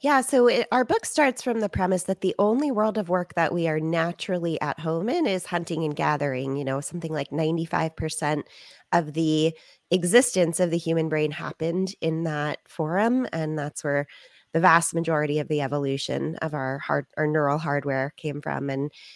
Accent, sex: American, female